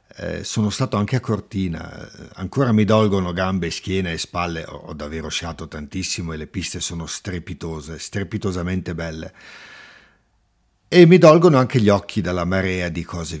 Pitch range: 85-105 Hz